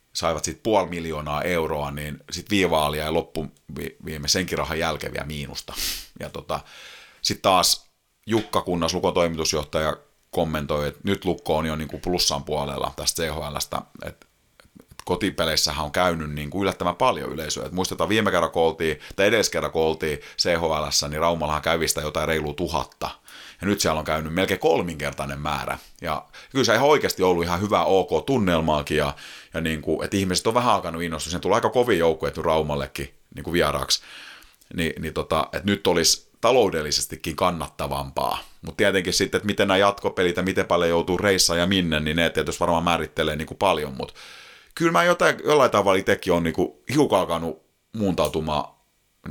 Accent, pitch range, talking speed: native, 75-90 Hz, 160 wpm